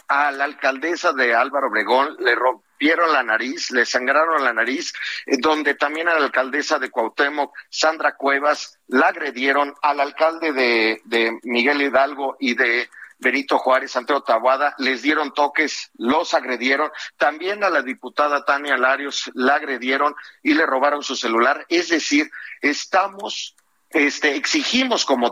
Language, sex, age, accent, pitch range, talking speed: Spanish, male, 50-69, Mexican, 135-180 Hz, 145 wpm